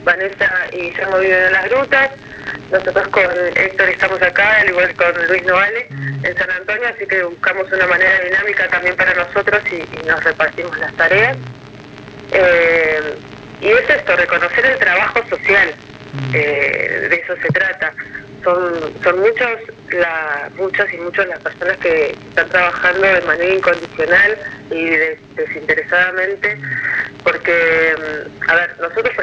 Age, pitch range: 30-49, 170-215 Hz